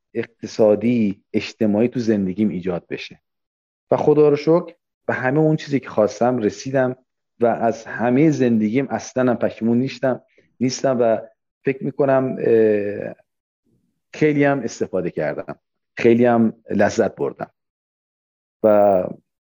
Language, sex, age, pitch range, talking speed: Persian, male, 40-59, 105-135 Hz, 115 wpm